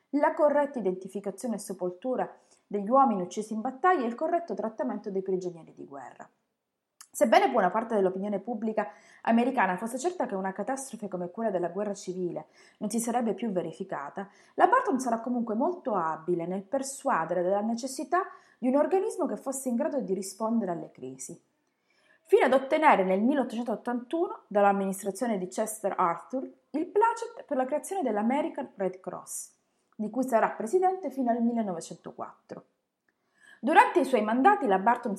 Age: 30-49